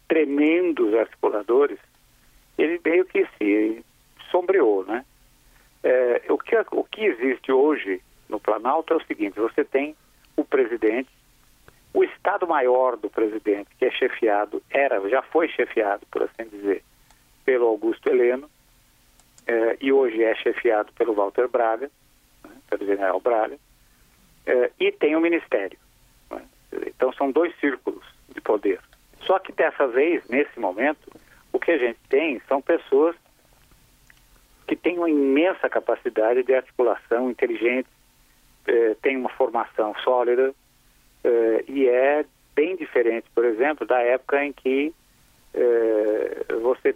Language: Portuguese